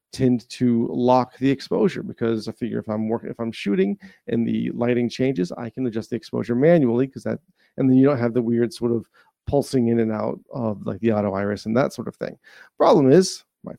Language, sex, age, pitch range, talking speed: English, male, 40-59, 115-135 Hz, 225 wpm